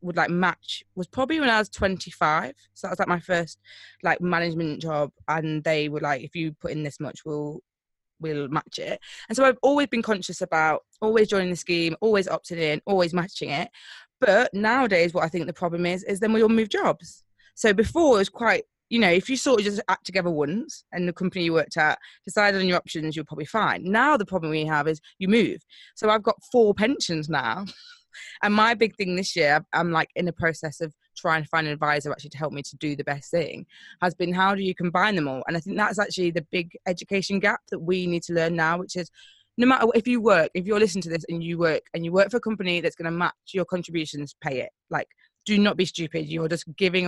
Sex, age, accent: female, 20-39, British